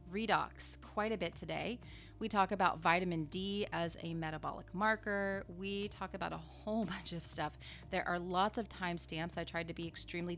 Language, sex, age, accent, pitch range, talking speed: English, female, 30-49, American, 165-205 Hz, 185 wpm